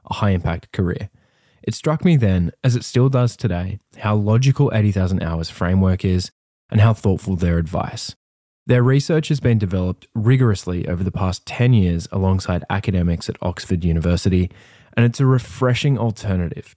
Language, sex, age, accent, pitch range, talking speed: English, male, 20-39, Australian, 90-120 Hz, 160 wpm